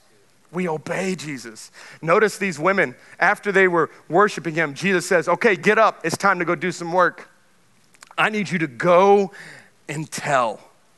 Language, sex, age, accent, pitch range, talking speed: English, male, 40-59, American, 160-205 Hz, 165 wpm